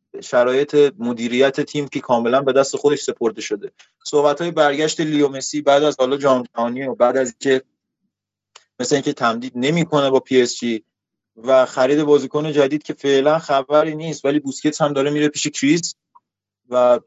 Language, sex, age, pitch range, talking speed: Persian, male, 30-49, 125-155 Hz, 160 wpm